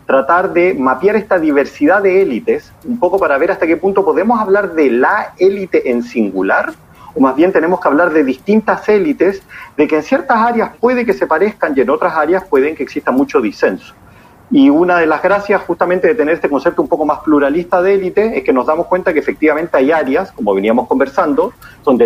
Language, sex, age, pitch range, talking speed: Spanish, male, 40-59, 130-210 Hz, 210 wpm